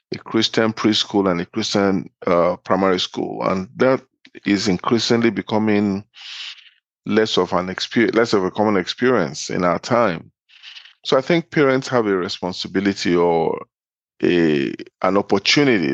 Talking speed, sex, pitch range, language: 140 wpm, male, 95-110 Hz, English